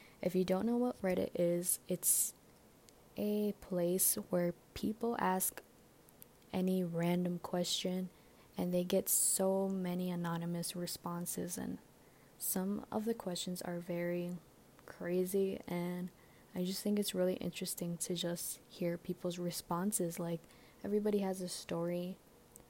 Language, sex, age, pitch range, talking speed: English, female, 20-39, 170-185 Hz, 125 wpm